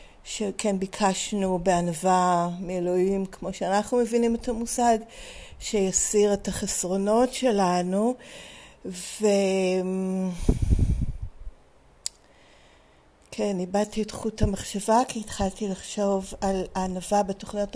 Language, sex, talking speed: Hebrew, female, 80 wpm